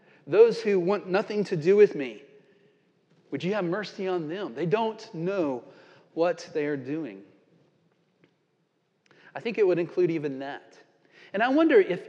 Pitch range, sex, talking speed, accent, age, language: 160-240 Hz, male, 160 wpm, American, 40-59, English